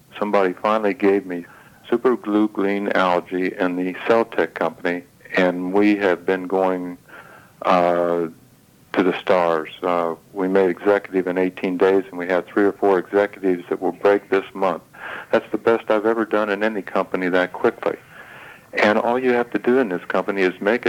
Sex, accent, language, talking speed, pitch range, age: male, American, English, 180 wpm, 95-110 Hz, 60-79